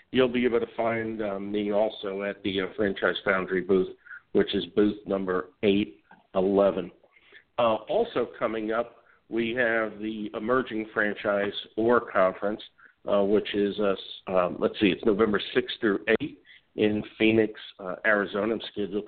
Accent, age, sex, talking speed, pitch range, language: American, 50-69, male, 150 wpm, 100-110 Hz, English